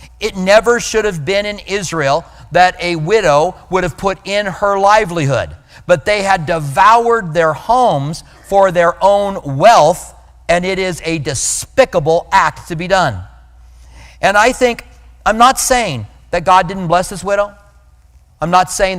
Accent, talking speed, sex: American, 160 wpm, male